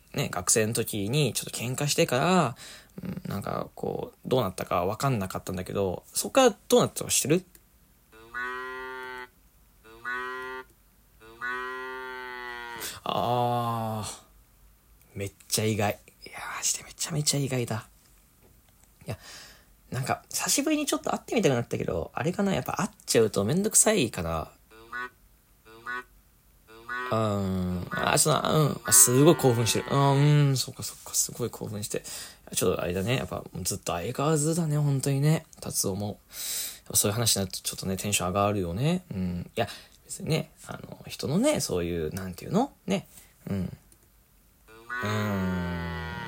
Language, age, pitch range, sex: Japanese, 20-39, 100-140 Hz, male